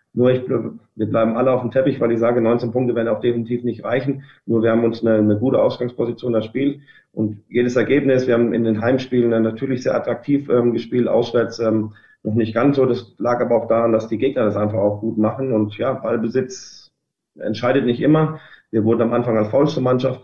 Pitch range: 110-120 Hz